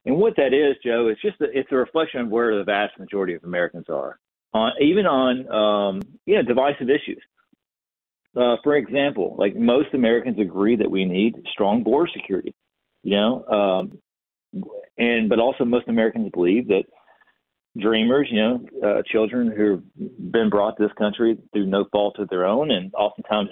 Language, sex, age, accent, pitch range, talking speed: English, male, 40-59, American, 105-140 Hz, 180 wpm